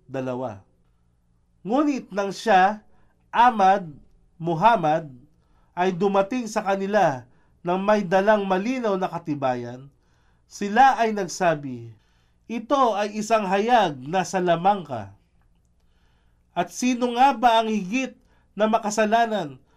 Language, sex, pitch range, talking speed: Filipino, male, 135-215 Hz, 105 wpm